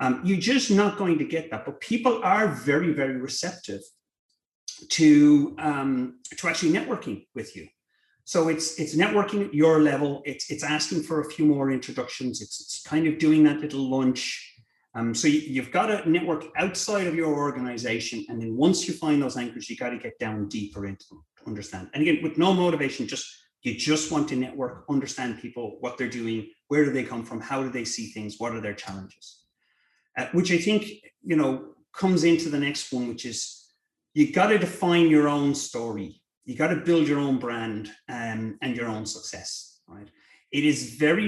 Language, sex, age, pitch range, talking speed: English, male, 30-49, 115-160 Hz, 200 wpm